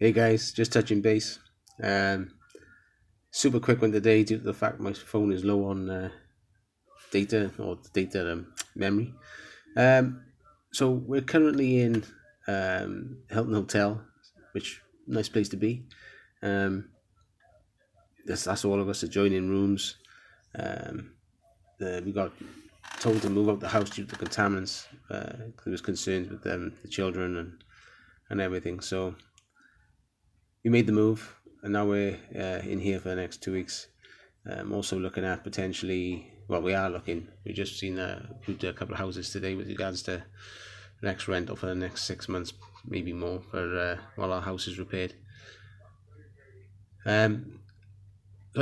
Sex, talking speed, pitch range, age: male, 160 wpm, 95-110 Hz, 20-39